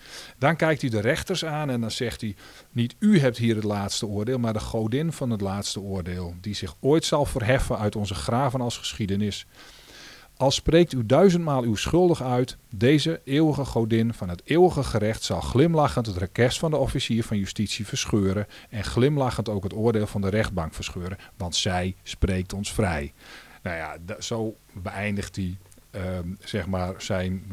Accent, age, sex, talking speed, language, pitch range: Dutch, 40-59, male, 170 wpm, Dutch, 100-125 Hz